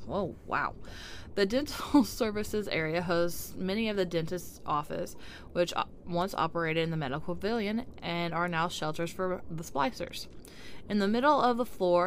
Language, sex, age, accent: English, female, 20-39, American